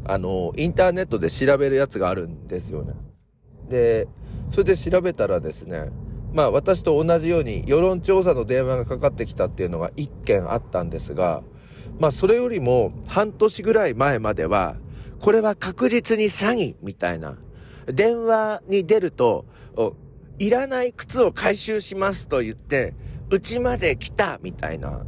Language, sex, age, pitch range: Japanese, male, 40-59, 115-190 Hz